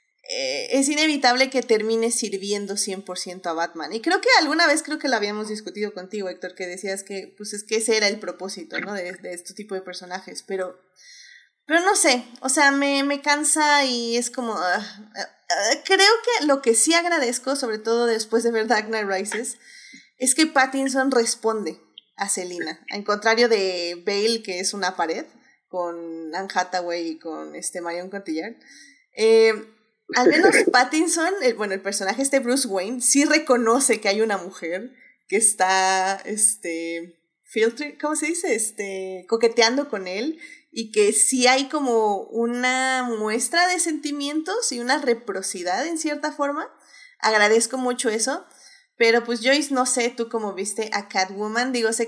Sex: female